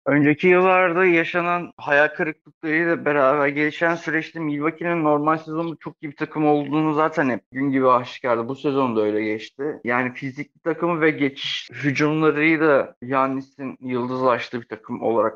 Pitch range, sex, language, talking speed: 135-165 Hz, male, Turkish, 150 wpm